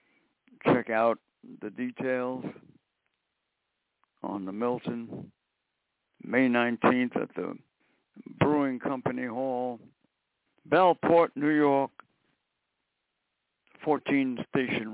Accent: American